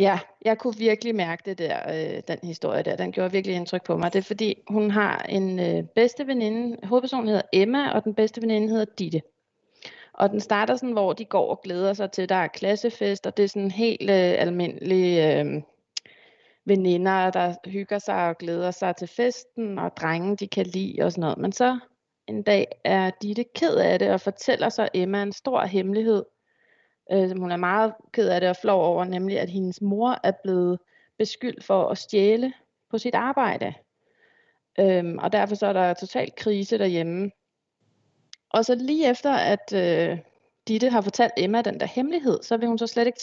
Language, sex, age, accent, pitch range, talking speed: Danish, female, 30-49, native, 185-230 Hz, 185 wpm